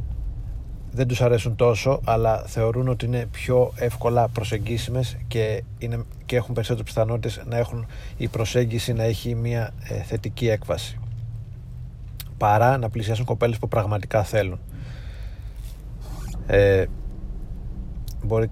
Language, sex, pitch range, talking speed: Greek, male, 100-120 Hz, 115 wpm